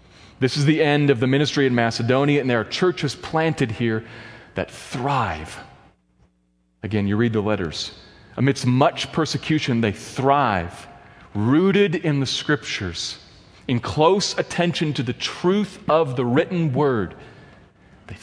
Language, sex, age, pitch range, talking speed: English, male, 40-59, 95-150 Hz, 140 wpm